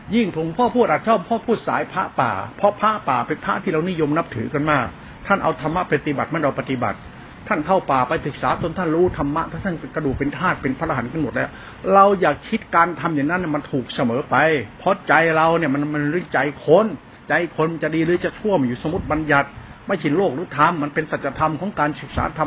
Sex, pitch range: male, 155-190 Hz